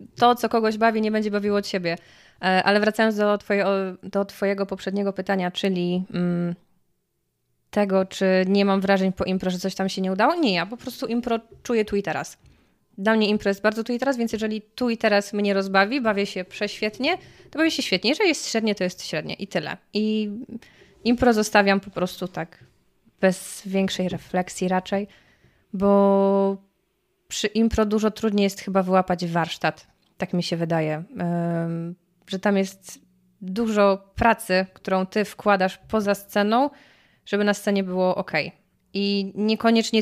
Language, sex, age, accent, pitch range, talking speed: Polish, female, 20-39, native, 185-220 Hz, 165 wpm